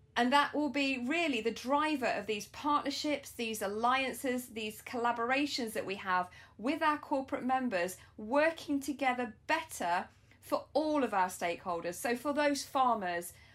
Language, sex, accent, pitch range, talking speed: English, female, British, 215-280 Hz, 145 wpm